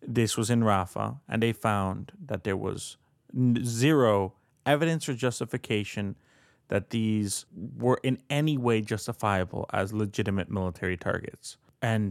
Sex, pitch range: male, 100-130 Hz